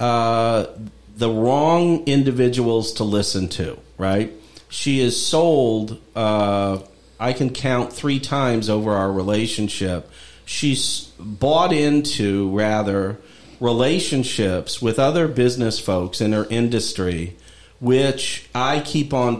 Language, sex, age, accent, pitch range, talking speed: English, male, 50-69, American, 105-125 Hz, 110 wpm